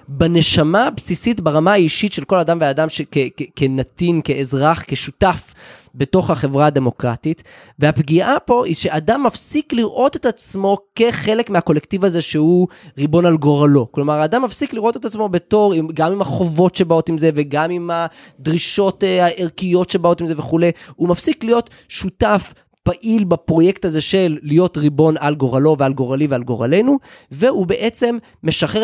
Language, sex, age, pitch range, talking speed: Hebrew, male, 20-39, 140-195 Hz, 150 wpm